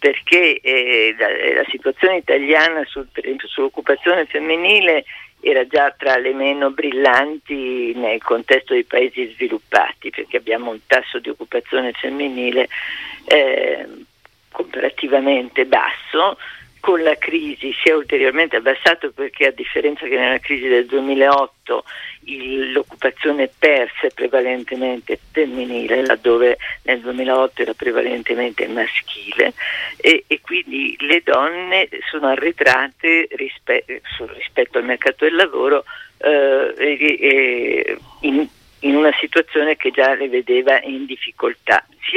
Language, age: Italian, 40-59